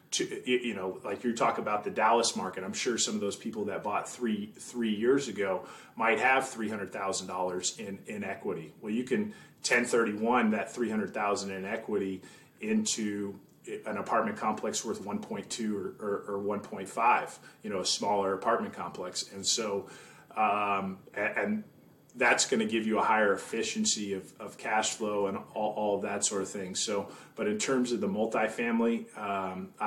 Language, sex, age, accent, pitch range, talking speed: English, male, 30-49, American, 100-115 Hz, 190 wpm